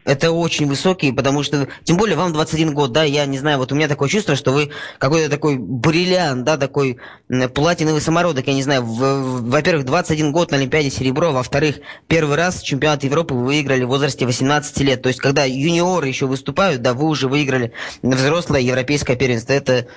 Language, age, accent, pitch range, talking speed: Russian, 20-39, native, 130-155 Hz, 185 wpm